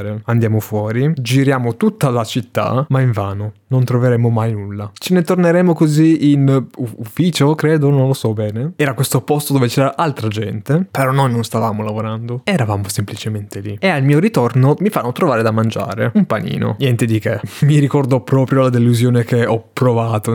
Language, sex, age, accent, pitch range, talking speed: Italian, male, 20-39, native, 110-140 Hz, 185 wpm